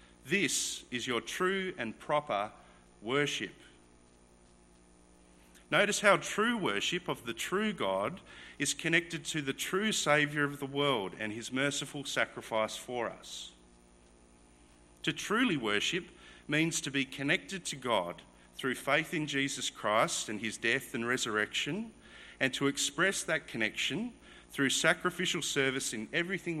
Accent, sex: Australian, male